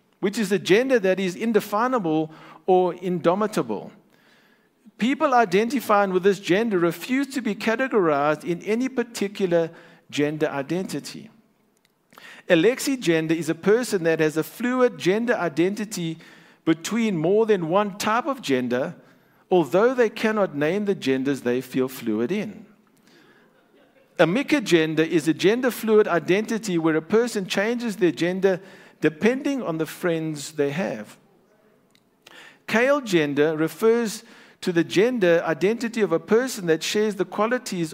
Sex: male